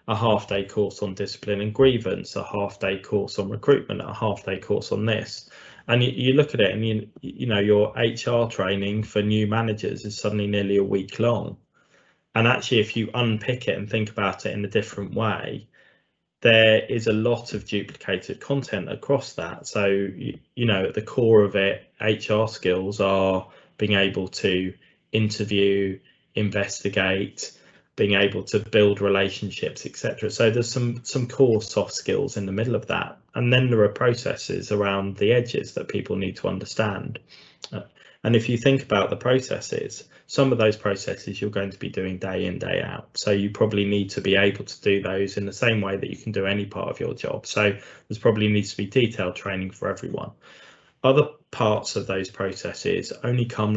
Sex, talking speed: male, 195 wpm